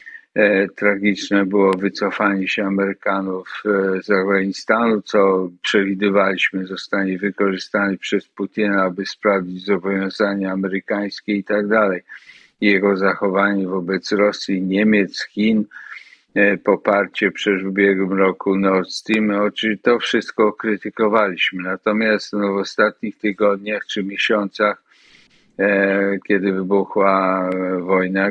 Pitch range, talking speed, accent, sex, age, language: 95-105 Hz, 90 wpm, native, male, 50-69, Polish